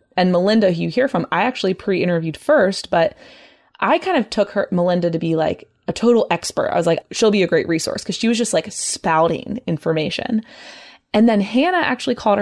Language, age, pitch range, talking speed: English, 20-39, 165-205 Hz, 215 wpm